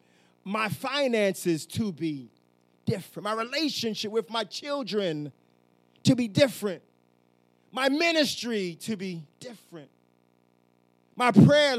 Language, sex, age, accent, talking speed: English, male, 30-49, American, 100 wpm